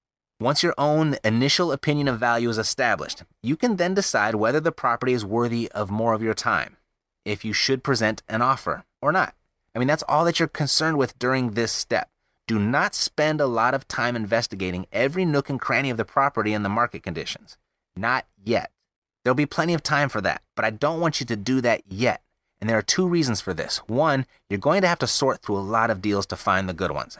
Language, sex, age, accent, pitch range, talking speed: English, male, 30-49, American, 105-145 Hz, 225 wpm